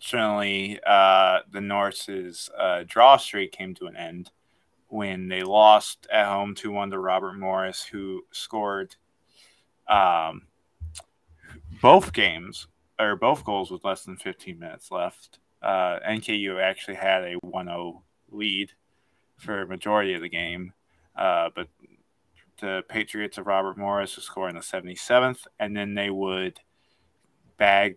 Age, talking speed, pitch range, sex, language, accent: 20-39, 135 wpm, 90-110 Hz, male, English, American